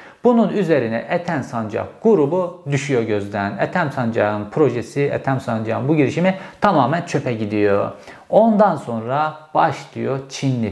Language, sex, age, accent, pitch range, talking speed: Turkish, male, 50-69, native, 120-160 Hz, 120 wpm